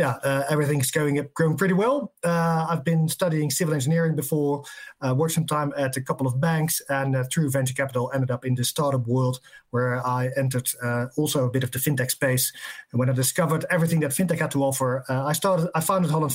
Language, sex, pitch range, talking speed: English, male, 130-155 Hz, 225 wpm